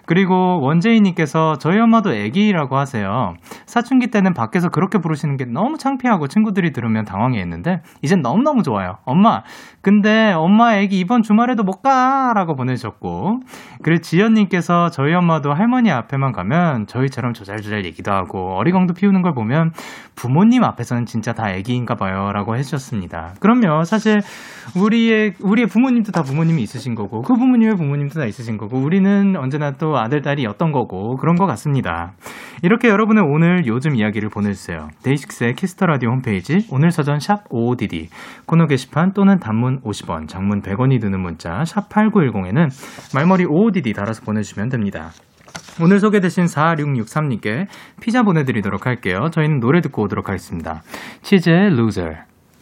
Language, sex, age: Korean, male, 20-39